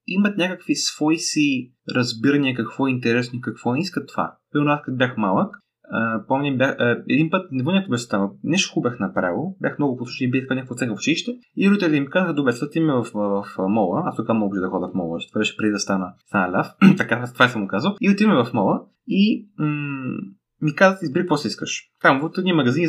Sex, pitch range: male, 125-170 Hz